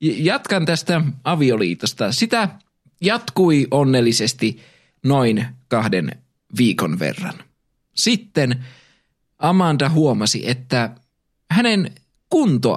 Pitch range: 125-175 Hz